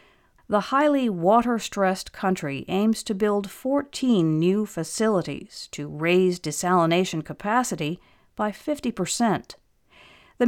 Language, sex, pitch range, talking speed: English, female, 170-235 Hz, 105 wpm